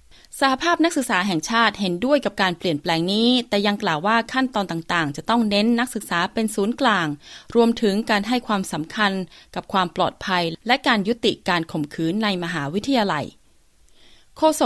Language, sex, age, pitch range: Thai, female, 20-39, 170-230 Hz